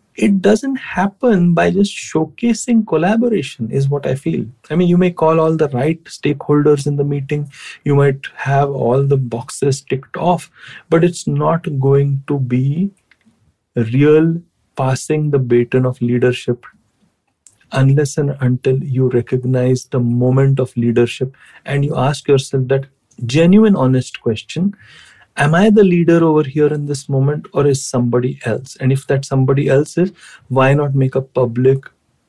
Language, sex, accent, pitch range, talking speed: English, male, Indian, 130-160 Hz, 155 wpm